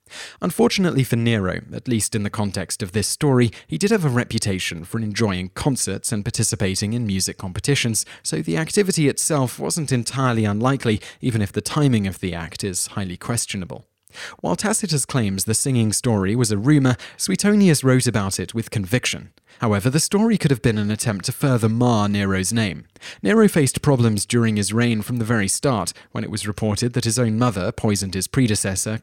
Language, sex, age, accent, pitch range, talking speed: English, male, 30-49, British, 100-130 Hz, 185 wpm